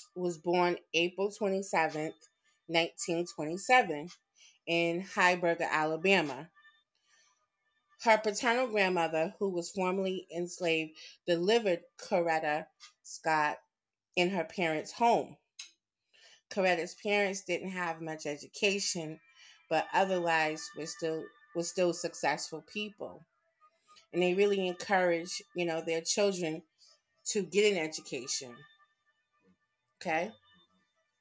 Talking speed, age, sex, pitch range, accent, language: 95 wpm, 30-49, female, 165-215 Hz, American, English